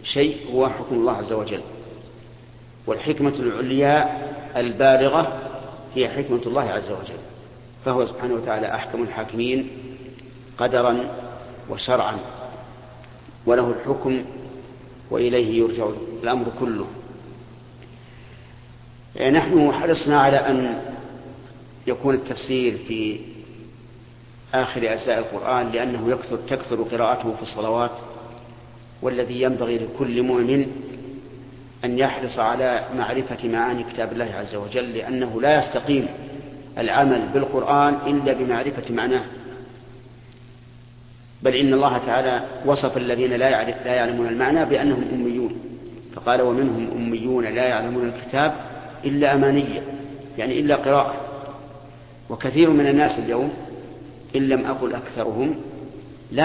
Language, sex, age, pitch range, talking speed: Arabic, male, 50-69, 120-135 Hz, 100 wpm